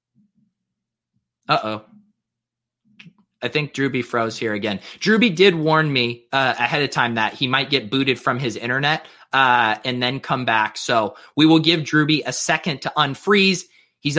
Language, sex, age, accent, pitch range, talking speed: English, male, 30-49, American, 140-195 Hz, 165 wpm